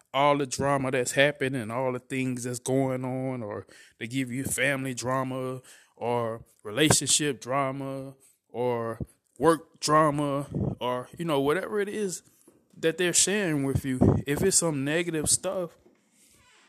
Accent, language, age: American, English, 20-39